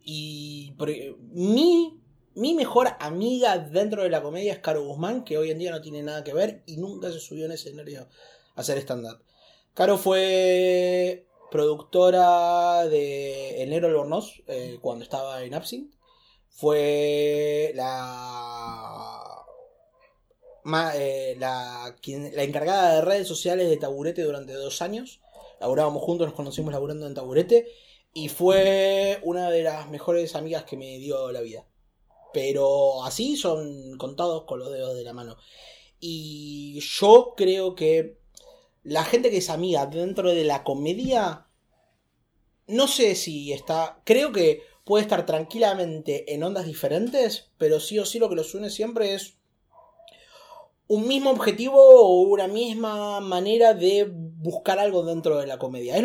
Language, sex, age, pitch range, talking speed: Spanish, male, 20-39, 150-210 Hz, 150 wpm